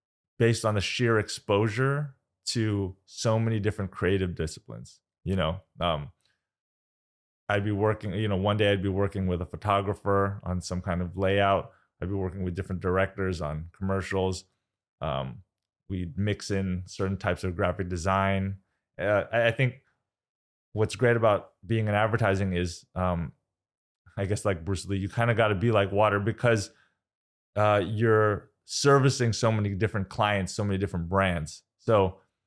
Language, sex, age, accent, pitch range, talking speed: English, male, 20-39, American, 90-110 Hz, 160 wpm